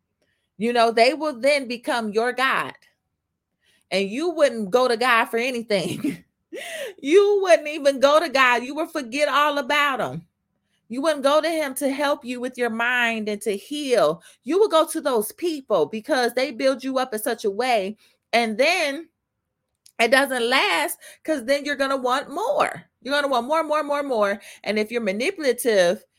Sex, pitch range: female, 220-290 Hz